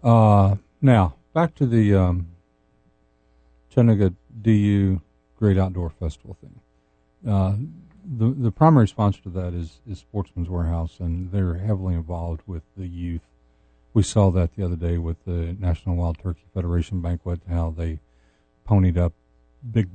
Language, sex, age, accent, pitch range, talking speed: English, male, 50-69, American, 85-105 Hz, 145 wpm